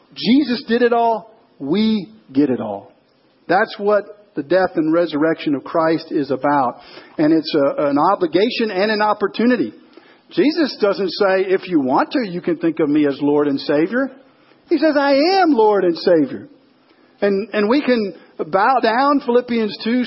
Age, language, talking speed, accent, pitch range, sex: 50-69, English, 170 wpm, American, 180-265 Hz, male